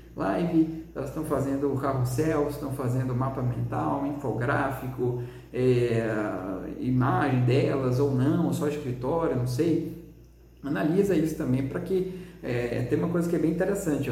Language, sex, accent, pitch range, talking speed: Portuguese, male, Brazilian, 130-165 Hz, 145 wpm